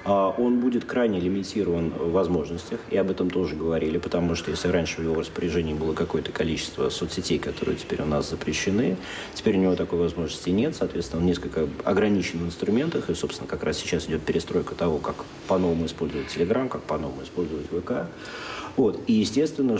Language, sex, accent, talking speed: Russian, male, native, 180 wpm